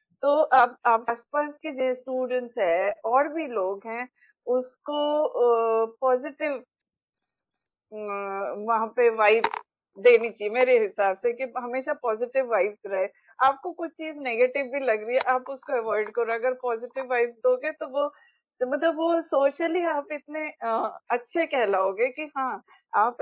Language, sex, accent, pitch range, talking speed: English, female, Indian, 225-290 Hz, 145 wpm